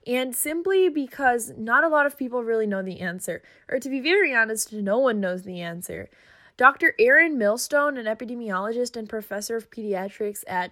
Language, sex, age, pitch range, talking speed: English, female, 10-29, 205-250 Hz, 180 wpm